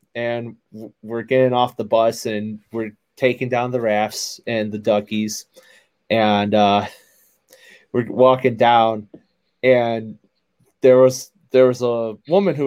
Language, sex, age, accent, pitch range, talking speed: English, male, 20-39, American, 125-190 Hz, 135 wpm